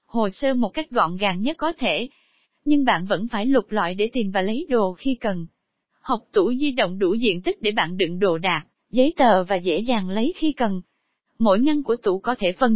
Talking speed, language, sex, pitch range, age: 230 wpm, Vietnamese, female, 200-285 Hz, 20-39